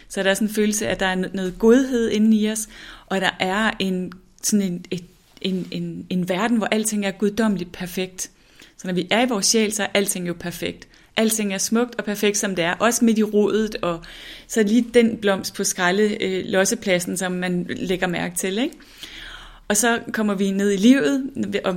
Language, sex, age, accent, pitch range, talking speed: Danish, female, 30-49, native, 190-220 Hz, 205 wpm